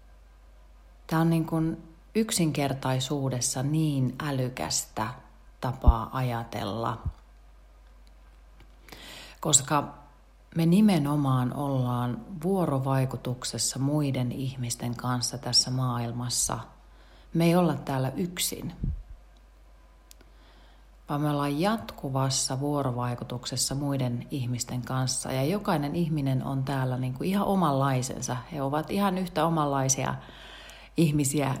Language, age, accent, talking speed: Finnish, 30-49, native, 90 wpm